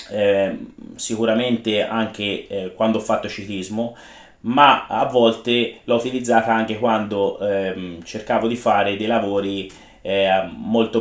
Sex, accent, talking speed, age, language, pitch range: male, native, 125 wpm, 30-49, Italian, 105-120 Hz